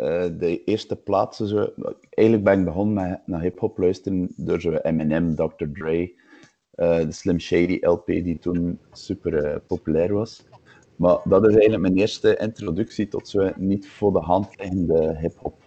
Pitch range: 85-100 Hz